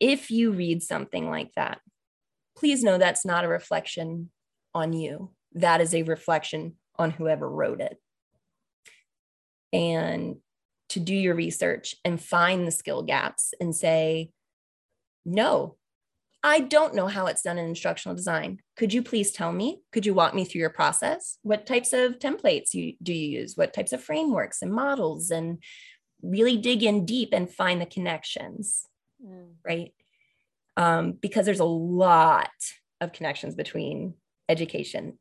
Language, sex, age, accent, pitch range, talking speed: English, female, 20-39, American, 165-210 Hz, 150 wpm